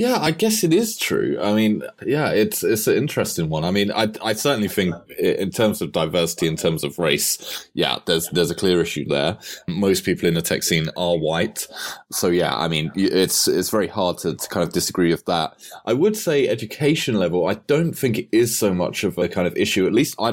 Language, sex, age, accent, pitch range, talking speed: English, male, 20-39, British, 85-110 Hz, 230 wpm